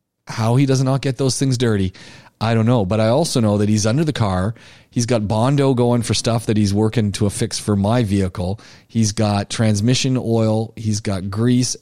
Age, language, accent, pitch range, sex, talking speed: 40-59, English, American, 100-130 Hz, male, 210 wpm